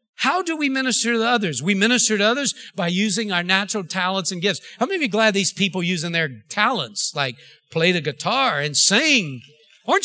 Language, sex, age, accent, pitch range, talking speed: English, male, 50-69, American, 170-245 Hz, 205 wpm